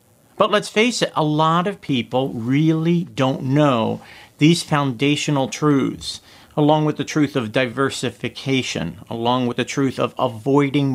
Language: English